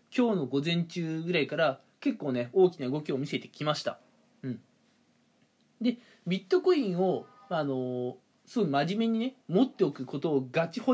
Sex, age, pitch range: male, 20-39, 145-230 Hz